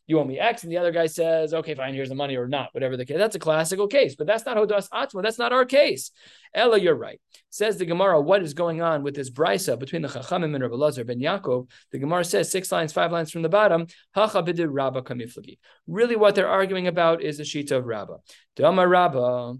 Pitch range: 140-185 Hz